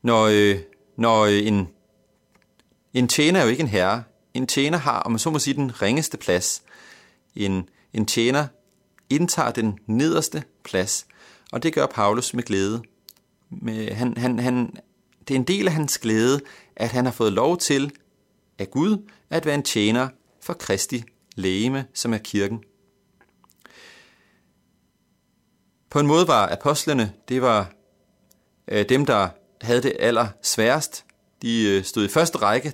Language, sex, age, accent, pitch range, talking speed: Danish, male, 30-49, native, 105-155 Hz, 145 wpm